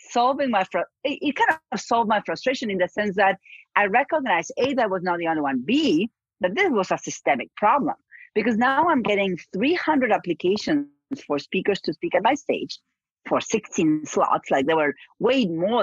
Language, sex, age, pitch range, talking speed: English, female, 40-59, 190-280 Hz, 195 wpm